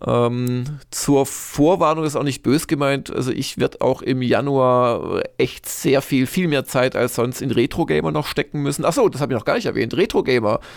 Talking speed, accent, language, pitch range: 200 wpm, German, German, 115-140 Hz